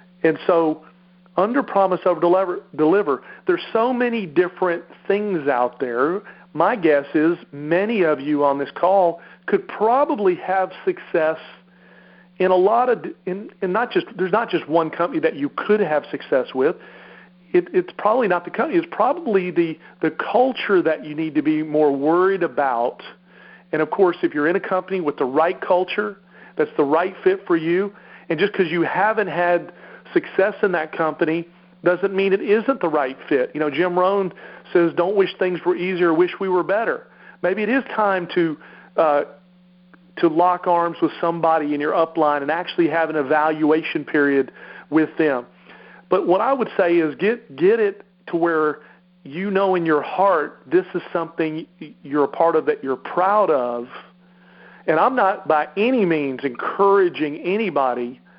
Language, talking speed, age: English, 175 wpm, 40-59